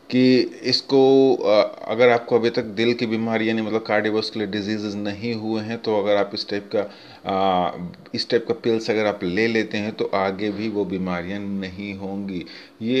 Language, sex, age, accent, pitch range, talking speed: Hindi, male, 30-49, native, 105-120 Hz, 185 wpm